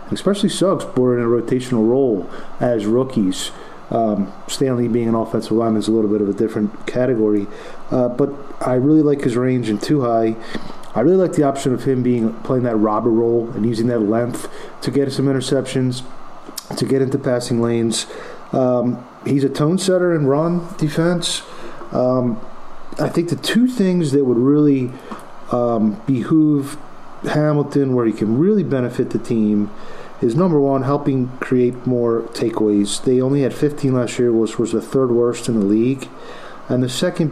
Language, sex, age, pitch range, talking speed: English, male, 30-49, 115-150 Hz, 175 wpm